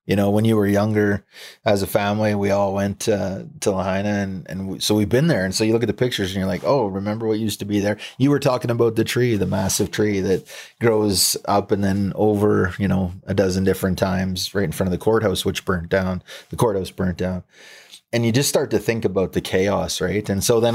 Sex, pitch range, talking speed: male, 95-110 Hz, 245 wpm